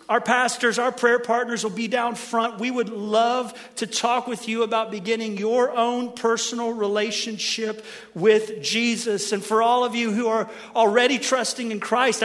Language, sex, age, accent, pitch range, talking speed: English, male, 40-59, American, 220-255 Hz, 170 wpm